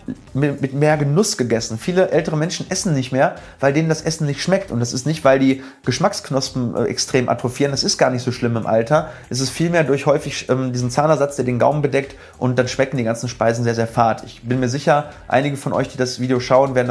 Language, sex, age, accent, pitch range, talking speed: German, male, 30-49, German, 115-140 Hz, 235 wpm